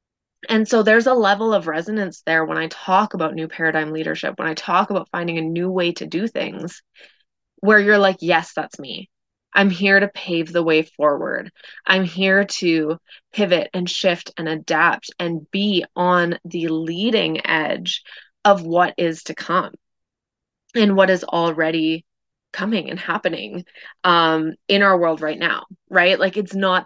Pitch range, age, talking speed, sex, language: 170-215 Hz, 20-39, 170 wpm, female, English